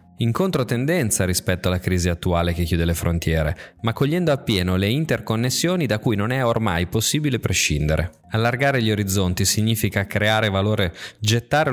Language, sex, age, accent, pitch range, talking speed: Italian, male, 20-39, native, 95-130 Hz, 150 wpm